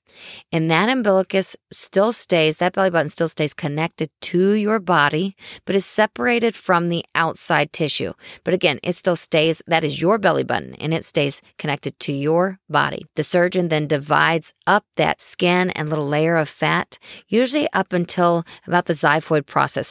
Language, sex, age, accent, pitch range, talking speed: English, female, 40-59, American, 155-190 Hz, 170 wpm